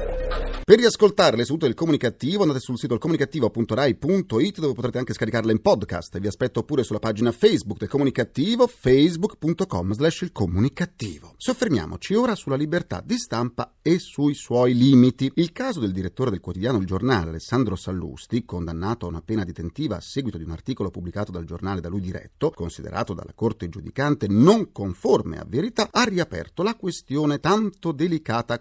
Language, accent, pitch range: Italian, native, 100-155 Hz